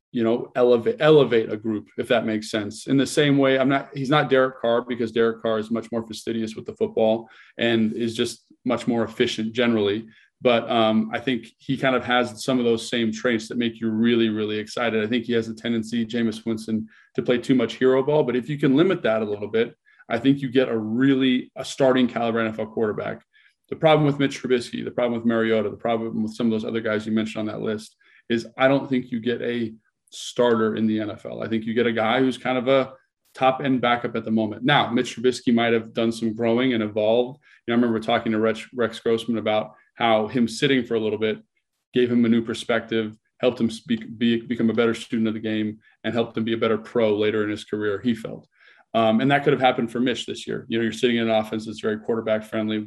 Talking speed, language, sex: 245 wpm, English, male